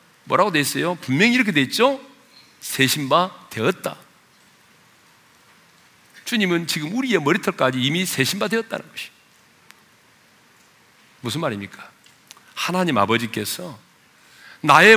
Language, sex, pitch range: Korean, male, 155-260 Hz